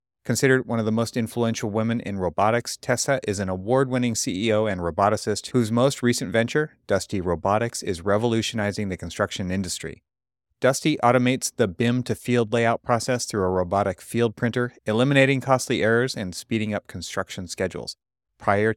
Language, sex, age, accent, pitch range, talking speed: English, male, 30-49, American, 90-115 Hz, 150 wpm